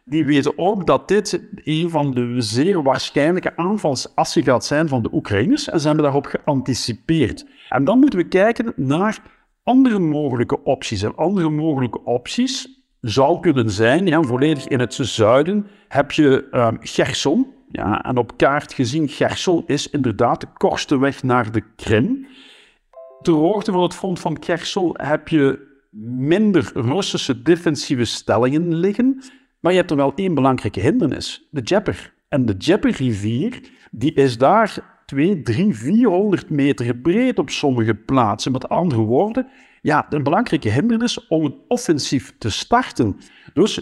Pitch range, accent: 130-195 Hz, Dutch